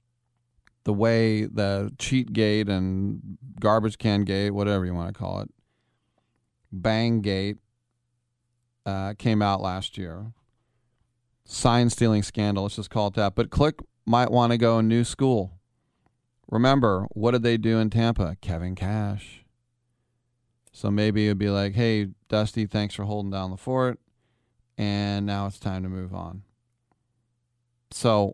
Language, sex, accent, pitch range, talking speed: English, male, American, 100-120 Hz, 145 wpm